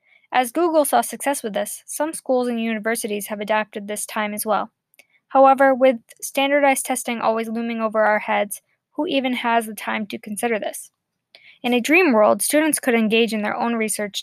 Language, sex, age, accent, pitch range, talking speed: English, female, 10-29, American, 210-245 Hz, 185 wpm